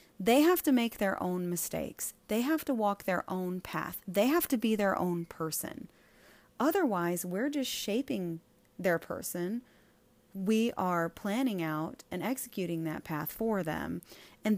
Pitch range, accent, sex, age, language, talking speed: 170-235 Hz, American, female, 30-49, English, 155 wpm